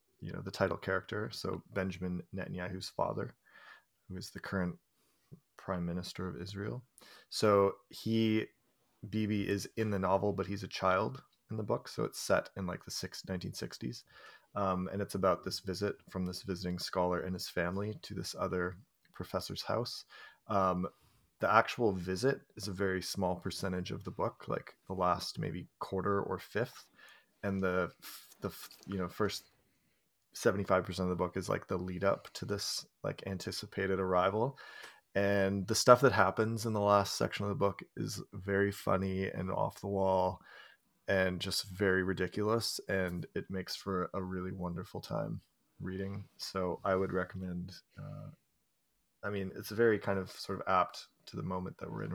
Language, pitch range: English, 90-100 Hz